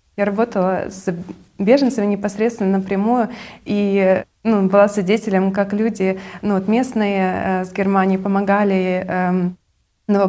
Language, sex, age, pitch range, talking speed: Russian, female, 20-39, 190-215 Hz, 120 wpm